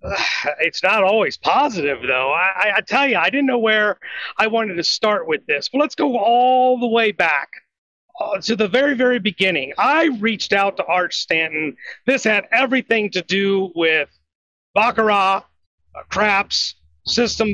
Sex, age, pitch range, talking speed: male, 40-59, 190-260 Hz, 165 wpm